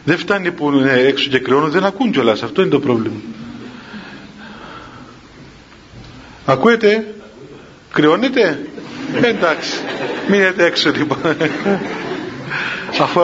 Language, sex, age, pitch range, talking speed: Greek, male, 50-69, 150-215 Hz, 95 wpm